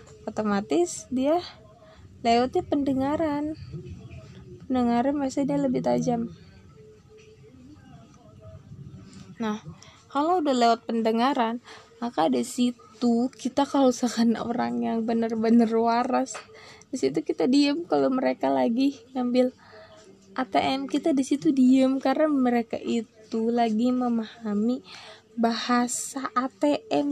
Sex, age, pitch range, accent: female, 20-39, 220-280 Hz, native